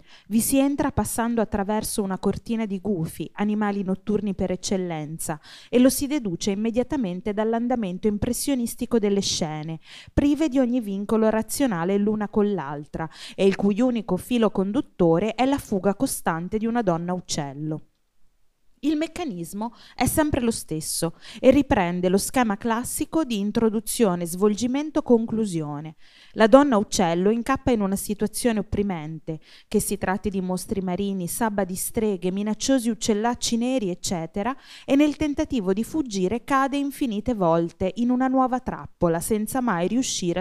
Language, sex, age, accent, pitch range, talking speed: Italian, female, 20-39, native, 185-245 Hz, 140 wpm